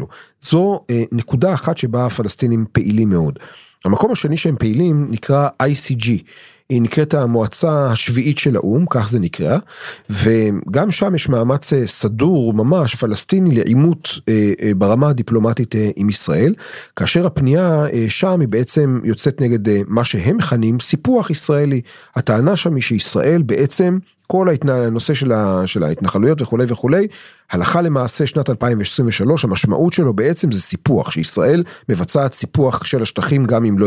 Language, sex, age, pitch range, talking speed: Hebrew, male, 40-59, 115-155 Hz, 130 wpm